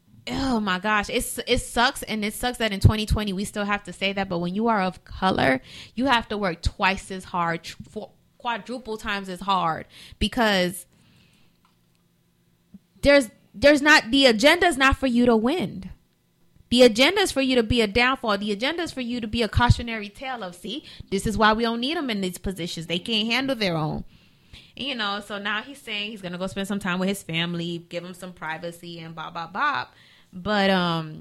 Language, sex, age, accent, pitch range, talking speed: English, female, 20-39, American, 185-245 Hz, 205 wpm